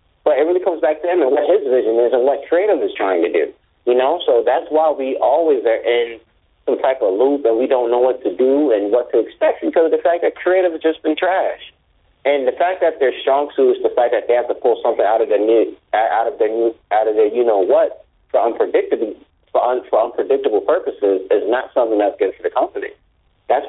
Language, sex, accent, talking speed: English, male, American, 250 wpm